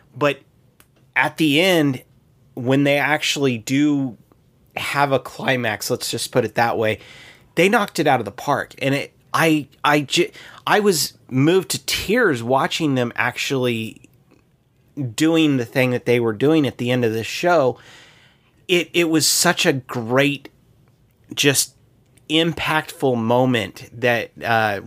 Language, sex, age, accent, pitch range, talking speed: English, male, 30-49, American, 120-145 Hz, 145 wpm